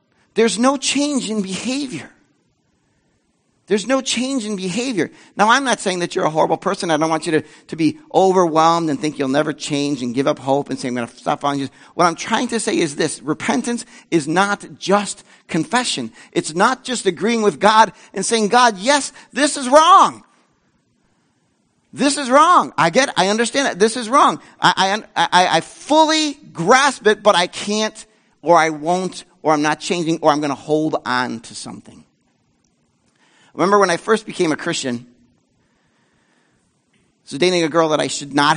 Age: 50-69